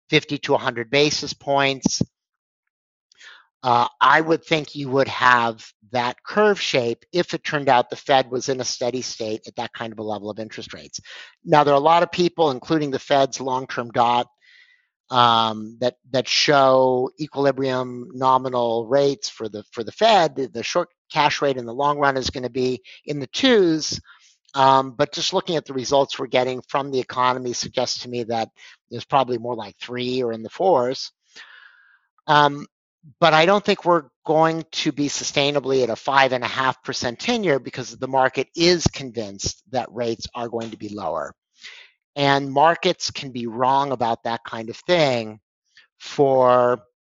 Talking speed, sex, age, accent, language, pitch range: 180 wpm, male, 50-69, American, English, 120-145 Hz